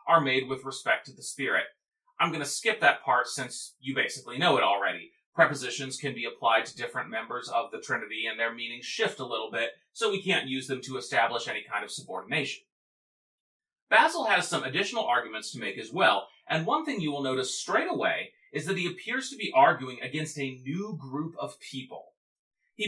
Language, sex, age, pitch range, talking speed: English, male, 30-49, 130-195 Hz, 205 wpm